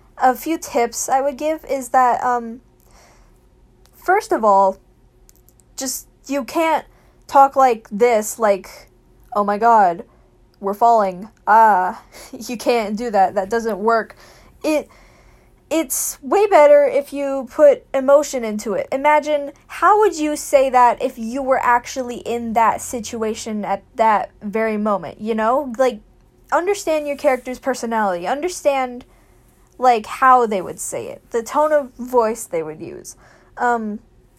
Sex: female